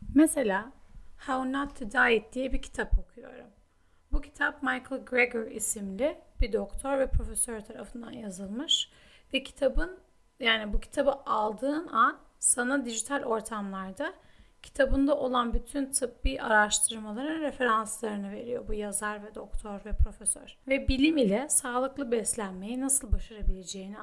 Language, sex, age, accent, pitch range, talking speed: Turkish, female, 30-49, native, 215-275 Hz, 125 wpm